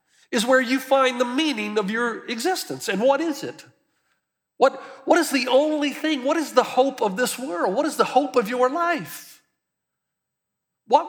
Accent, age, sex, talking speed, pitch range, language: American, 50-69, male, 185 wpm, 225-305 Hz, English